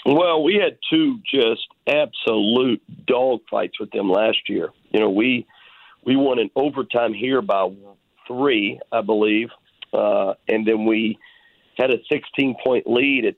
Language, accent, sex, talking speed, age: English, American, male, 150 wpm, 50-69